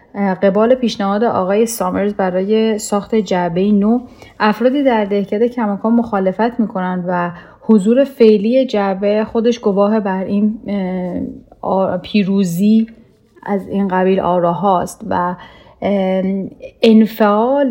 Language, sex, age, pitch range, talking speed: Persian, female, 10-29, 190-220 Hz, 100 wpm